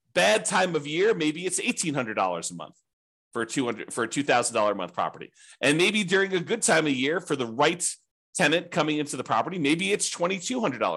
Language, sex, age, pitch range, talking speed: English, male, 40-59, 140-180 Hz, 185 wpm